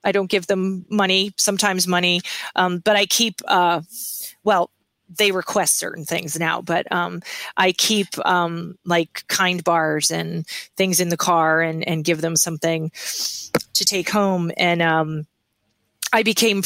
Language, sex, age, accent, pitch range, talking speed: English, female, 20-39, American, 165-195 Hz, 155 wpm